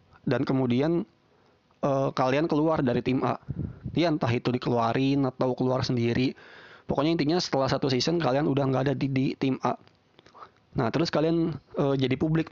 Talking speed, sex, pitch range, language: 165 wpm, male, 125-155 Hz, Indonesian